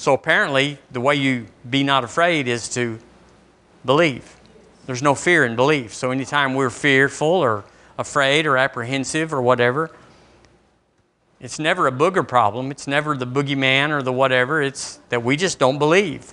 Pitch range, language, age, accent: 130-175 Hz, English, 50-69, American